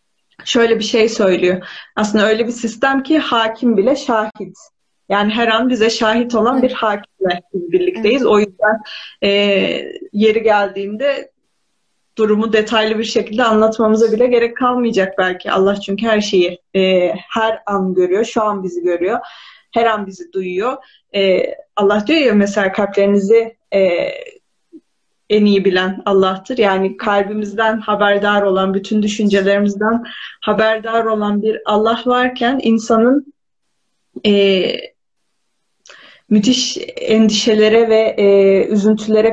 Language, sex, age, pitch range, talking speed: Turkish, female, 30-49, 200-250 Hz, 125 wpm